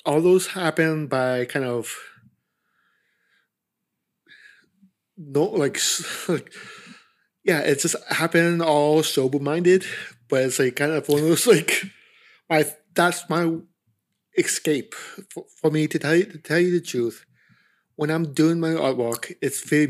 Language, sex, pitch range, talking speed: English, male, 125-170 Hz, 140 wpm